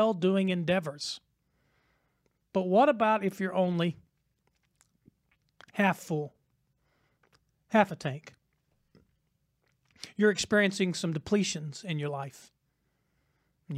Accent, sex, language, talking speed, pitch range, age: American, male, English, 90 wpm, 145-190 Hz, 40-59